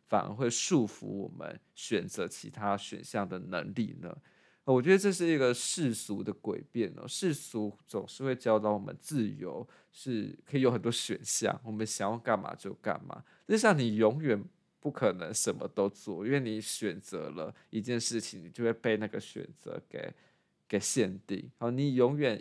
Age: 20-39